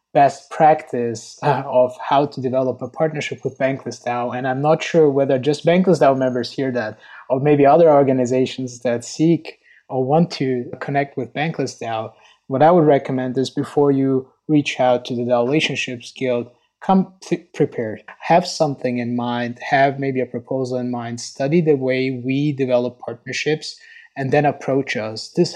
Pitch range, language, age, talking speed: 125-145 Hz, English, 20-39, 160 wpm